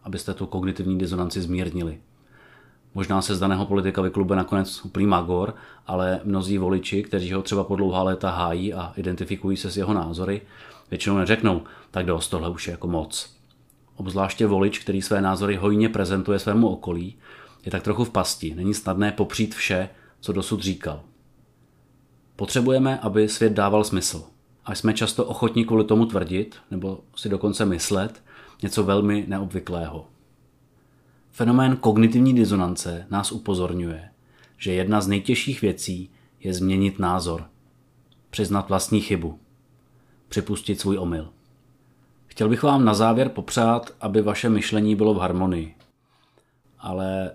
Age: 30-49